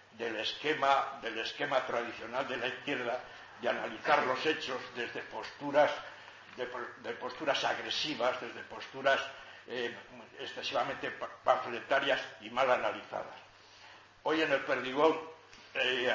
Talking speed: 115 wpm